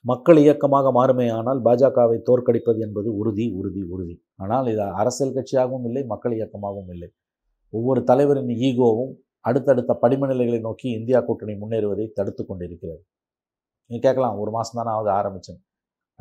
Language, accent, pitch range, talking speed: Tamil, native, 105-135 Hz, 125 wpm